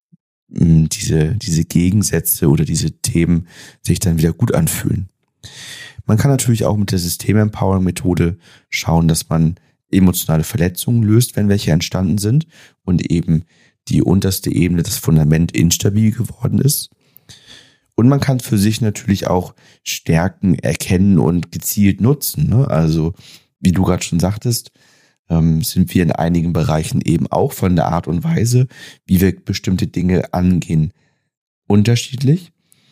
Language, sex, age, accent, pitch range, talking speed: German, male, 30-49, German, 85-120 Hz, 140 wpm